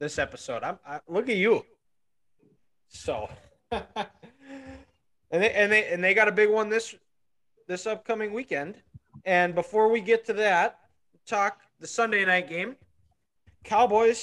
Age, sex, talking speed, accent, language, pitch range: 20-39, male, 140 wpm, American, English, 170-220 Hz